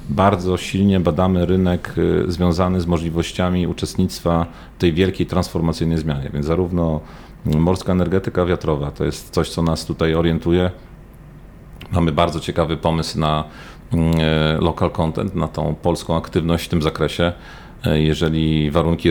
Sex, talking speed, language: male, 130 wpm, Polish